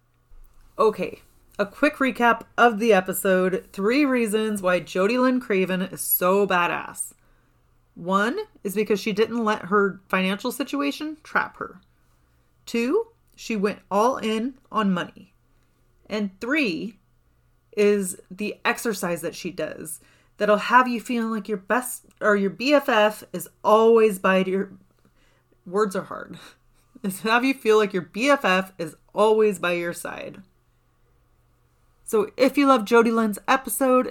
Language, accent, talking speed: English, American, 135 wpm